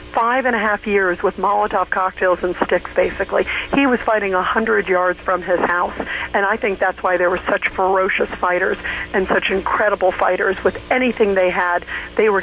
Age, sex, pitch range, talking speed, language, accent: 50-69, female, 180-205 Hz, 195 wpm, English, American